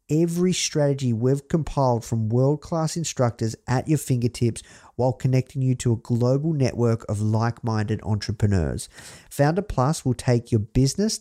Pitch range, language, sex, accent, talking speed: 115-140 Hz, English, male, Australian, 140 wpm